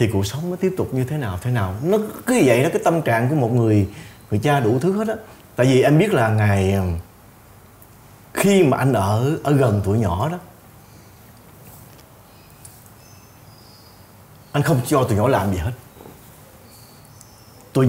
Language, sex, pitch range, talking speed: Vietnamese, male, 105-140 Hz, 170 wpm